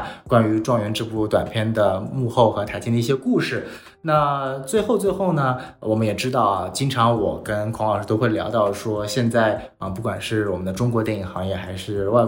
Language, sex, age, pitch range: Chinese, male, 20-39, 100-125 Hz